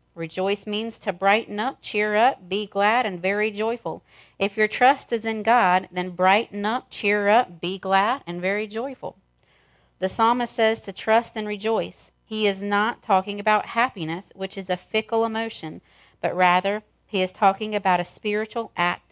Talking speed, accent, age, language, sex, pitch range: 175 wpm, American, 40-59, English, female, 180-215 Hz